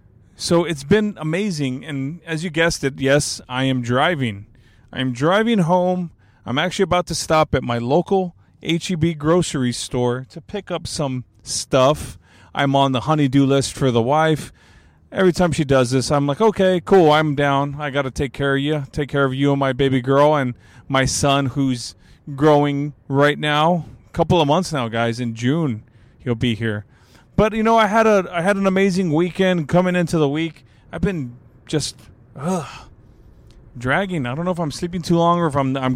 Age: 30-49